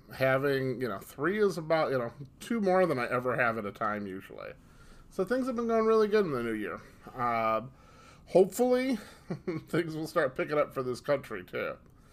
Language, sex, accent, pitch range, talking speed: English, male, American, 120-165 Hz, 200 wpm